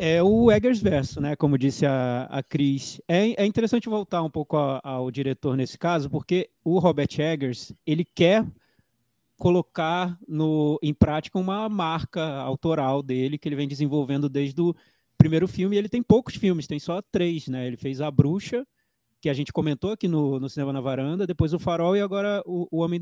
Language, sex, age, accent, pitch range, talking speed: Portuguese, male, 20-39, Brazilian, 140-200 Hz, 180 wpm